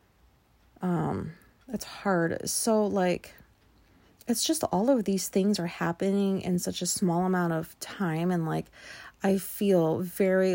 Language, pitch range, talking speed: English, 170-205 Hz, 140 wpm